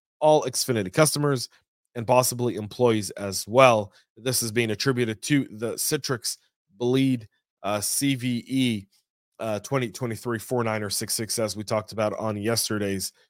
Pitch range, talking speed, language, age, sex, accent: 105-130 Hz, 125 wpm, English, 30-49, male, American